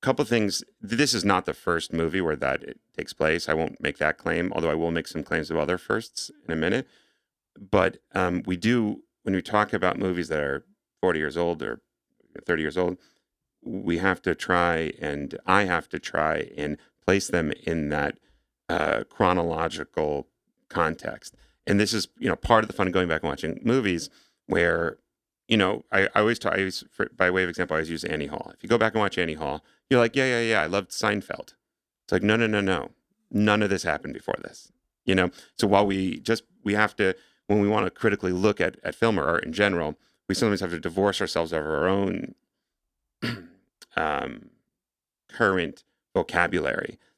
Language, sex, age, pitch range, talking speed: English, male, 40-59, 85-105 Hz, 205 wpm